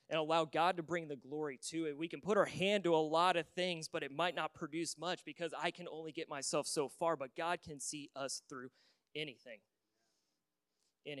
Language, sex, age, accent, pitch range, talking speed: English, male, 30-49, American, 140-170 Hz, 220 wpm